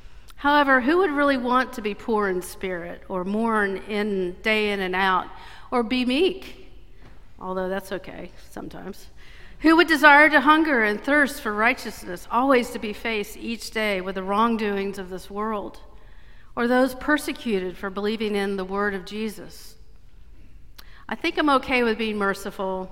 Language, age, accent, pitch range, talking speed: English, 50-69, American, 195-240 Hz, 160 wpm